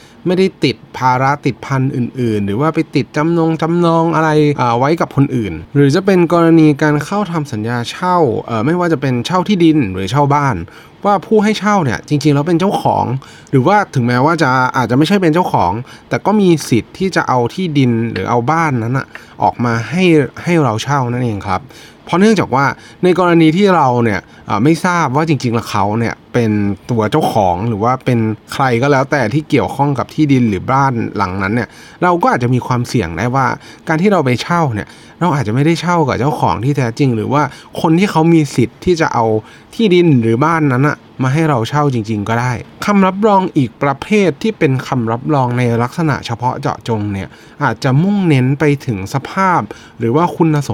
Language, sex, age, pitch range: Thai, male, 20-39, 115-160 Hz